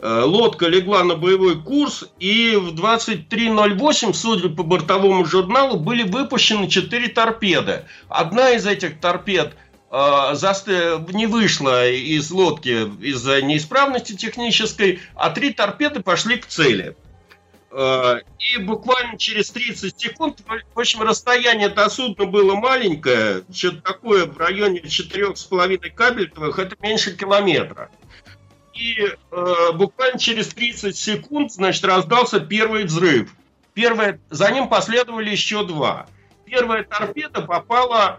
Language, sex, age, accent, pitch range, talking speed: Russian, male, 50-69, native, 180-230 Hz, 120 wpm